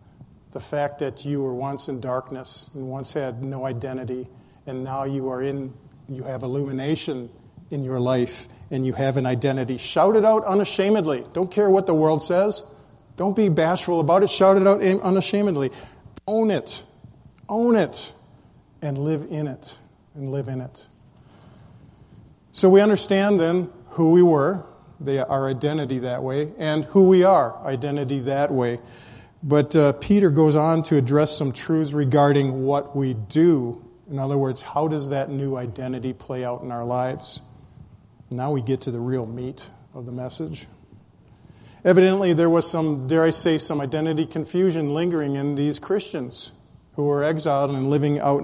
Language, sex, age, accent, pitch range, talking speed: English, male, 40-59, American, 130-170 Hz, 165 wpm